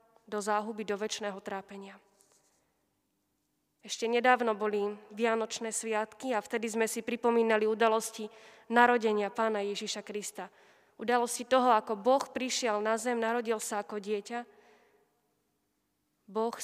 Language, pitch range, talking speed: Slovak, 210-235 Hz, 115 wpm